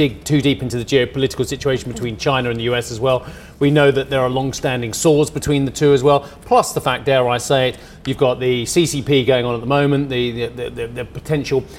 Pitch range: 125-150 Hz